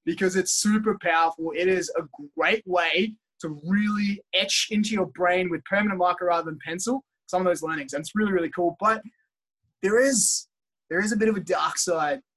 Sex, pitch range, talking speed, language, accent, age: male, 165-205 Hz, 200 wpm, English, Australian, 20-39